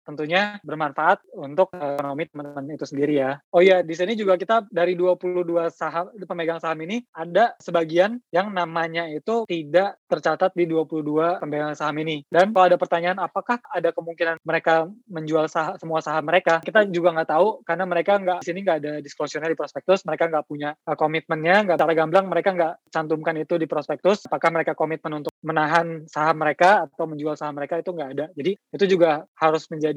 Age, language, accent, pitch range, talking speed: 20-39, Indonesian, native, 150-180 Hz, 185 wpm